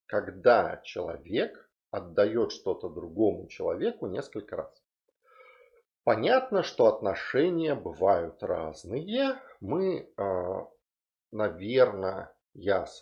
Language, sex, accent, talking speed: Russian, male, native, 80 wpm